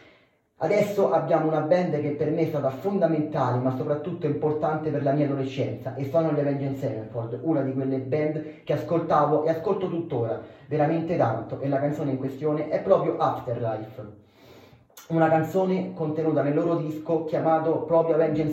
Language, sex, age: Italian, male, 20-39